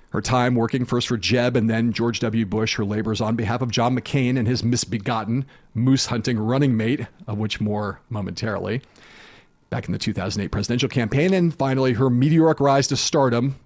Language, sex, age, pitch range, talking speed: English, male, 40-59, 120-165 Hz, 180 wpm